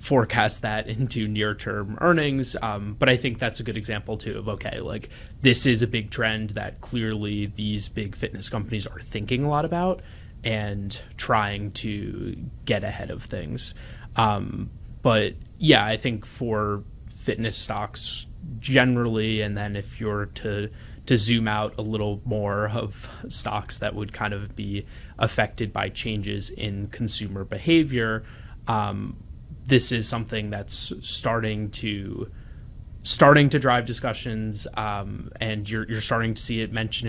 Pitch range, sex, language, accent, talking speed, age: 105-115 Hz, male, English, American, 150 wpm, 20-39